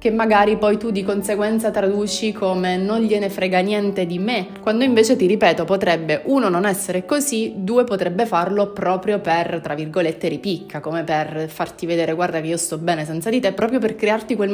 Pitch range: 170-205 Hz